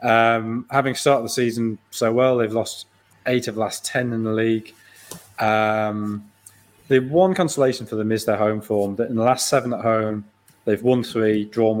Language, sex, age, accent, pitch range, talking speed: English, male, 20-39, British, 105-120 Hz, 195 wpm